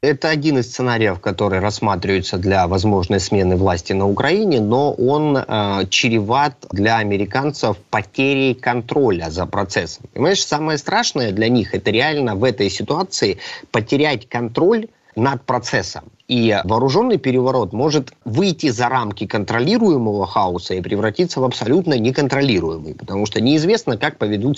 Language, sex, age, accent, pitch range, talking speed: Russian, male, 30-49, native, 110-145 Hz, 140 wpm